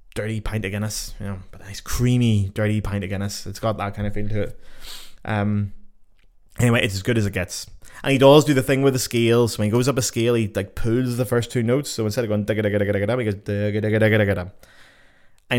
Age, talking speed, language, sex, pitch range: 20-39, 225 wpm, English, male, 100-125 Hz